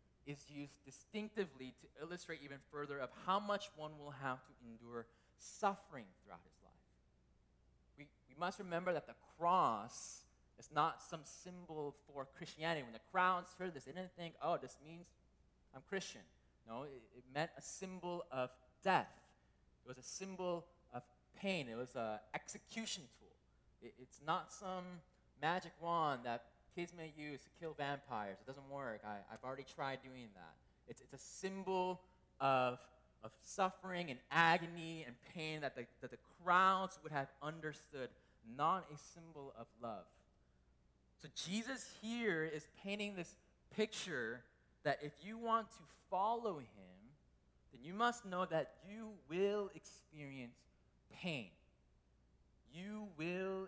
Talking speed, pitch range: 150 wpm, 120-180 Hz